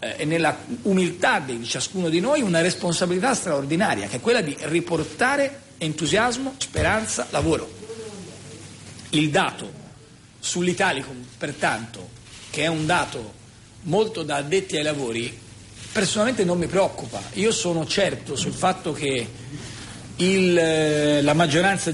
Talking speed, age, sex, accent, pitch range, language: 120 wpm, 40-59, male, native, 120-180 Hz, Italian